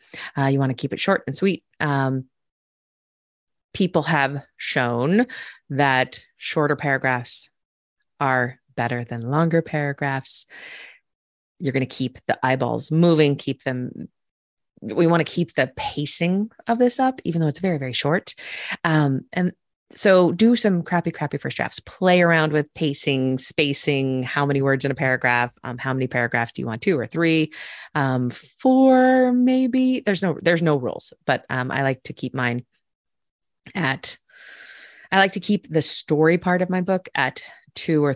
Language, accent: English, American